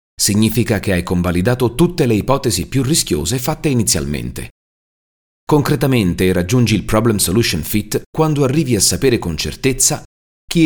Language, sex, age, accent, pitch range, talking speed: Italian, male, 40-59, native, 80-130 Hz, 130 wpm